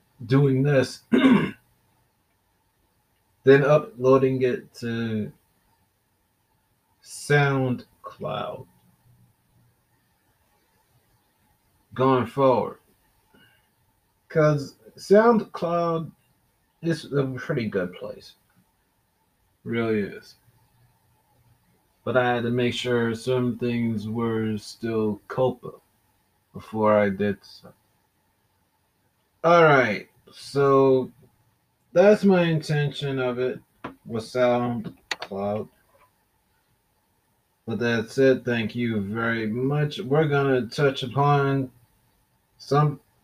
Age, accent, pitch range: 30-49, American, 110-140 Hz